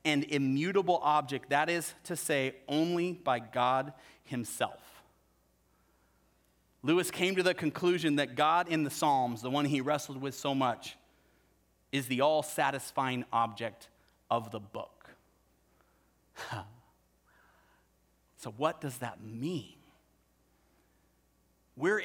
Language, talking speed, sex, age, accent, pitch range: English, 110 wpm, male, 30-49, American, 130-175 Hz